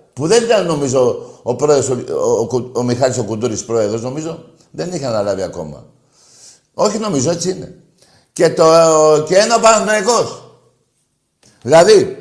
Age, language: 60-79, Greek